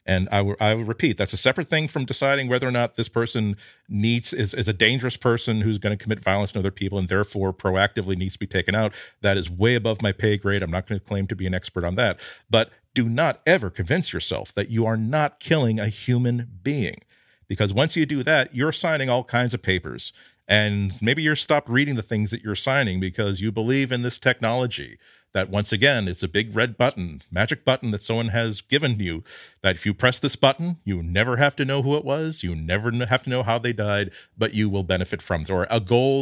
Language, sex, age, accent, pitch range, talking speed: English, male, 40-59, American, 100-125 Hz, 240 wpm